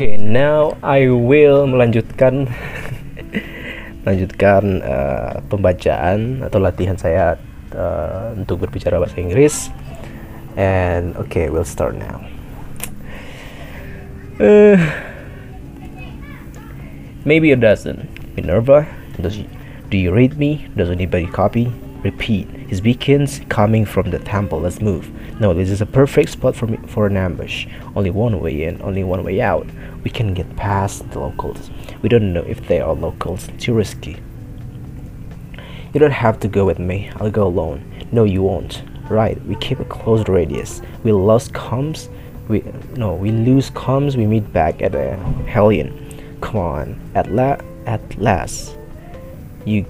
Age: 20-39